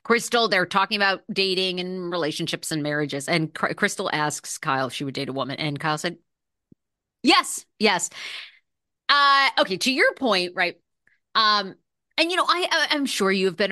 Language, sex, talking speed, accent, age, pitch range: English, female, 170 wpm, American, 30-49, 190-280 Hz